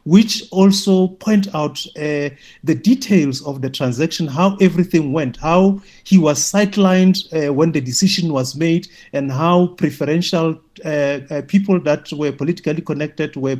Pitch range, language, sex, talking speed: 140-185 Hz, English, male, 150 wpm